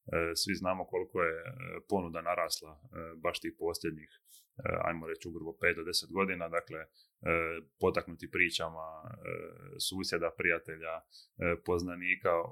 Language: Croatian